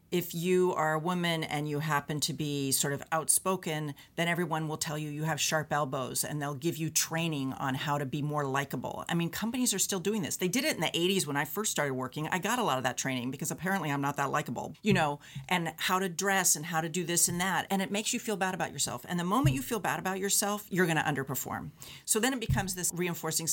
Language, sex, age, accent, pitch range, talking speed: English, female, 40-59, American, 145-185 Hz, 265 wpm